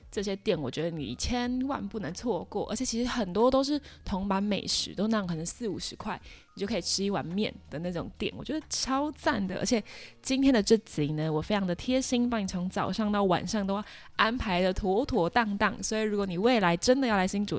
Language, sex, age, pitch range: Chinese, female, 20-39, 180-235 Hz